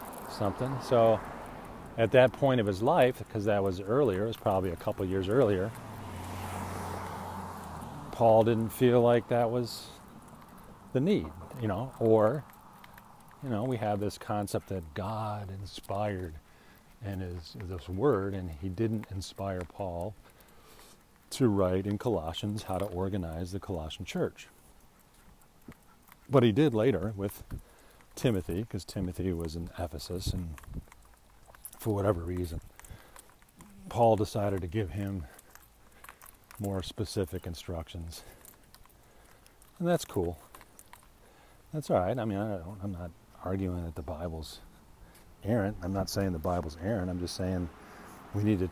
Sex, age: male, 40-59